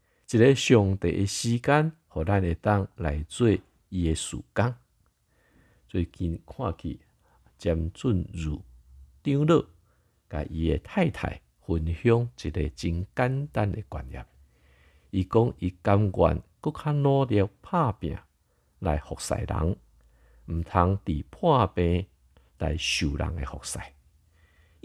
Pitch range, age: 80-105 Hz, 50-69